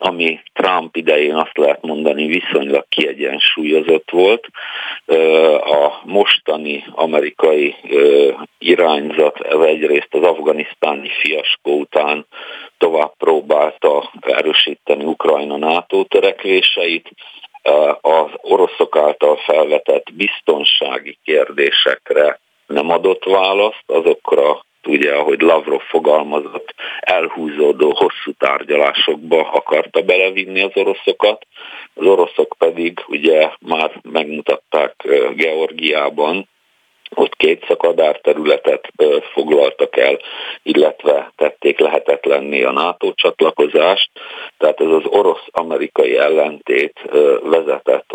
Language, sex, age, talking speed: Hungarian, male, 50-69, 85 wpm